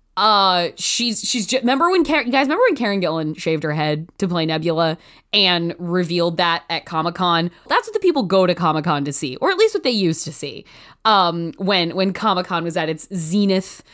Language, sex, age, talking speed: English, female, 20-39, 205 wpm